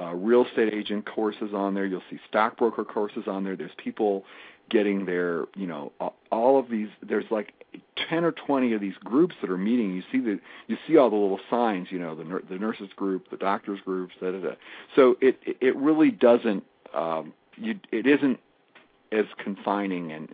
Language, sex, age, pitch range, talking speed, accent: English, male, 50-69, 95-120 Hz, 200 wpm, American